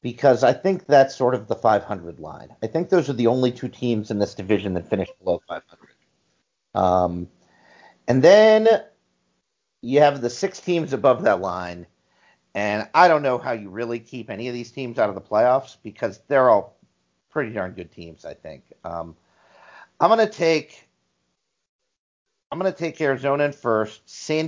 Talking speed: 180 wpm